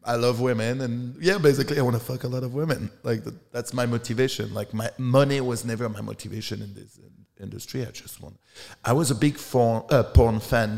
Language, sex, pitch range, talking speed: English, male, 105-125 Hz, 225 wpm